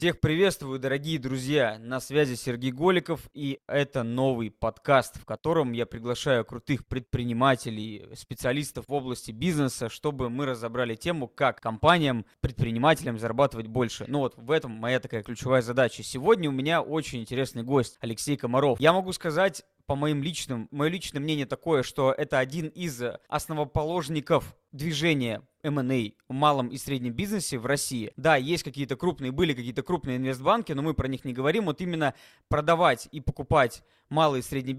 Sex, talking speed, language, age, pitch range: male, 160 wpm, Russian, 20-39, 125-160 Hz